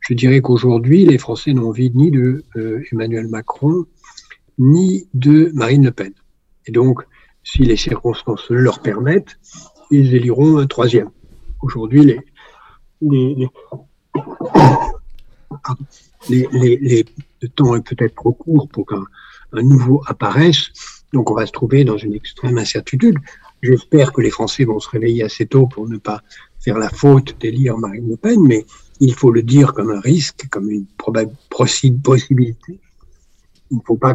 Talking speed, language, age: 155 wpm, French, 60-79